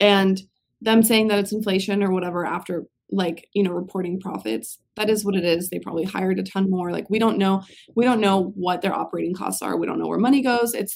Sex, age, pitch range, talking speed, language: female, 20-39, 190-235 Hz, 240 wpm, English